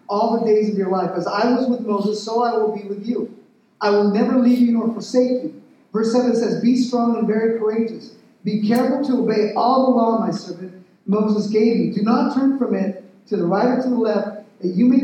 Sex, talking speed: male, 240 wpm